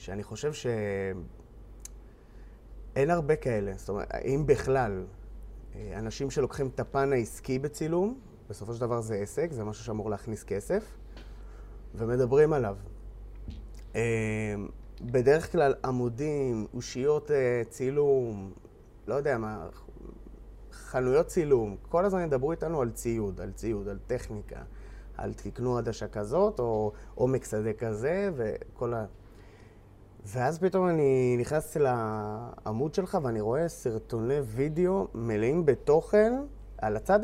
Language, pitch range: Hebrew, 105-145 Hz